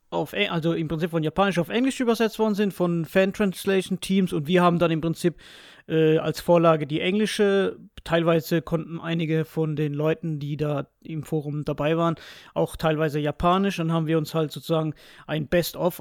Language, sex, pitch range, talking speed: German, male, 155-185 Hz, 185 wpm